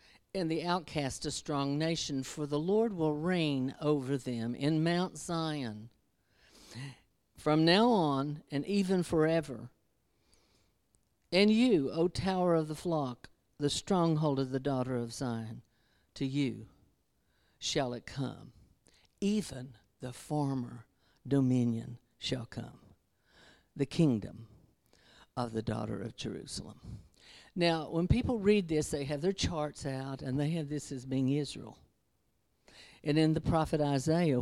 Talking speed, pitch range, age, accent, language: 135 wpm, 125-165 Hz, 60-79, American, English